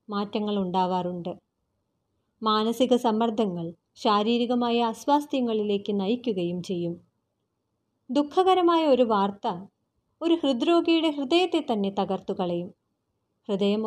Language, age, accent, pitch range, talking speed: Malayalam, 30-49, native, 190-265 Hz, 75 wpm